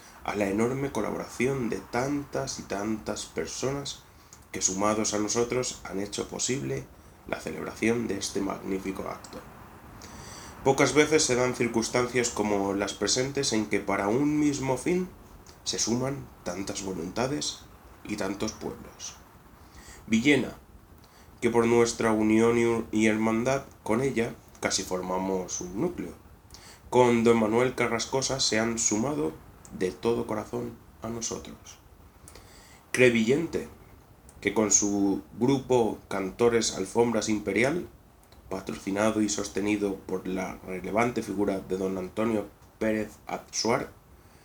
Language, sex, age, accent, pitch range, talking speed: Spanish, male, 20-39, Spanish, 95-120 Hz, 120 wpm